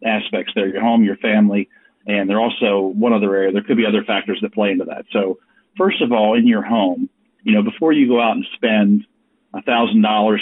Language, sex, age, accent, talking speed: English, male, 40-59, American, 225 wpm